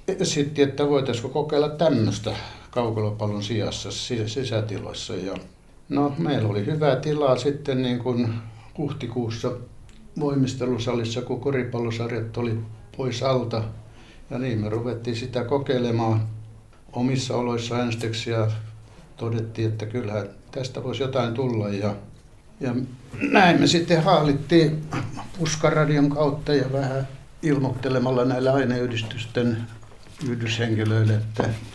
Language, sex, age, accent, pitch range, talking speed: Finnish, male, 60-79, native, 105-125 Hz, 105 wpm